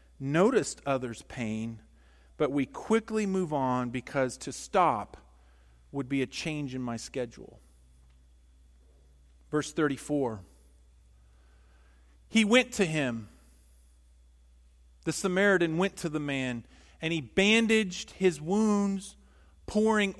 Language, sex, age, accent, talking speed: English, male, 40-59, American, 105 wpm